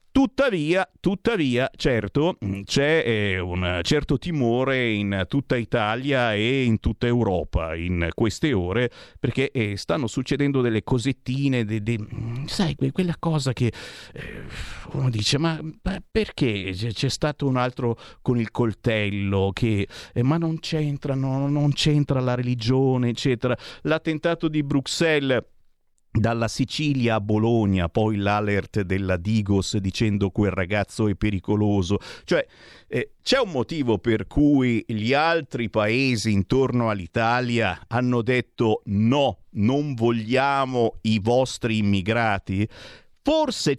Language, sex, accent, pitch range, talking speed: Italian, male, native, 110-145 Hz, 125 wpm